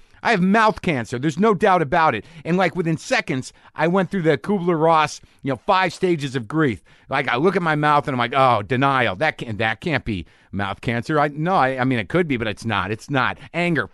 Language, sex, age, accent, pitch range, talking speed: English, male, 50-69, American, 120-170 Hz, 240 wpm